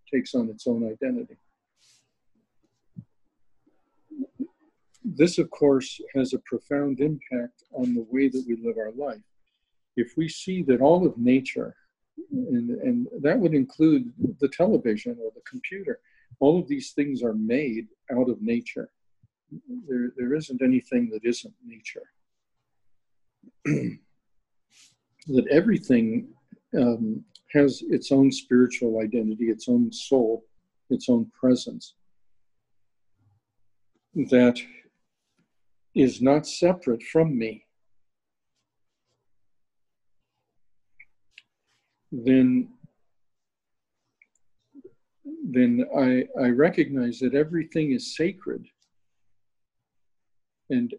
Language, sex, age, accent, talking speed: English, male, 50-69, American, 100 wpm